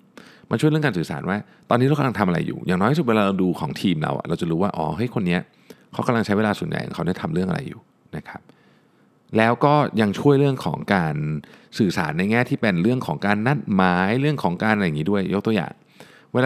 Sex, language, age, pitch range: male, Thai, 60-79, 95-130 Hz